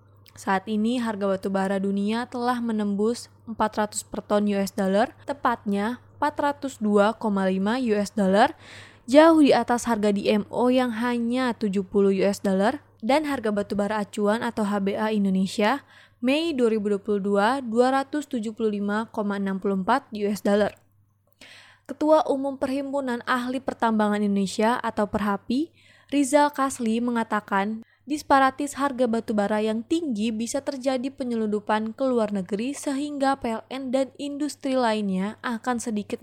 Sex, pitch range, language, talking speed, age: female, 205-255 Hz, Indonesian, 120 wpm, 20-39